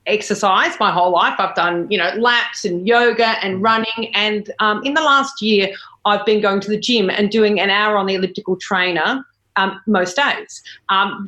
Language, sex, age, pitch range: English, female, 40-59, 195-240 Hz